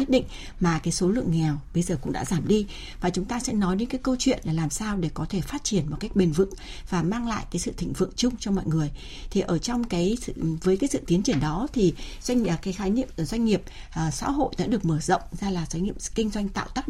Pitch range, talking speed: 175-235 Hz, 280 wpm